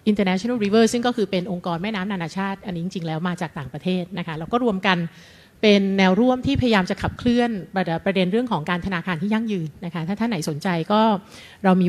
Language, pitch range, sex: English, 170-210 Hz, female